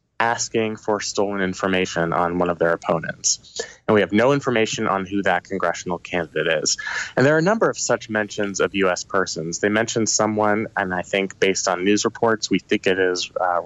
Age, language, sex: 20-39, English, male